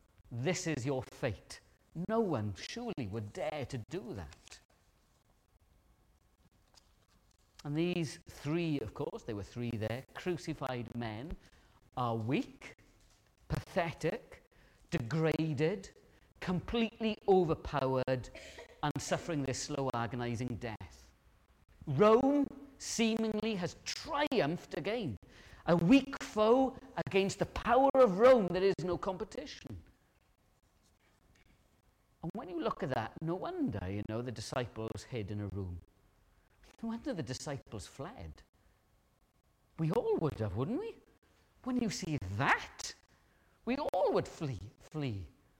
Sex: male